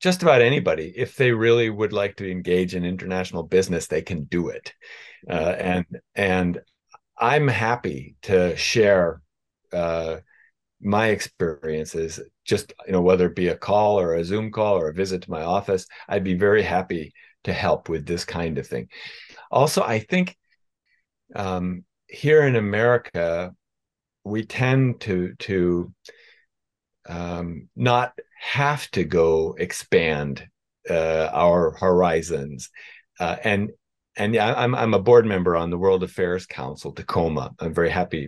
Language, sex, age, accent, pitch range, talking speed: English, male, 50-69, American, 85-110 Hz, 145 wpm